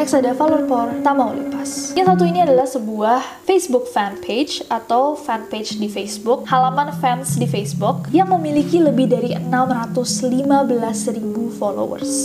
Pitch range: 205-275 Hz